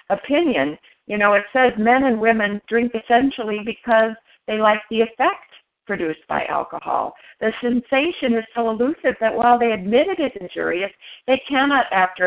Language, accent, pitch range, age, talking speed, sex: English, American, 185-255 Hz, 50-69, 160 wpm, female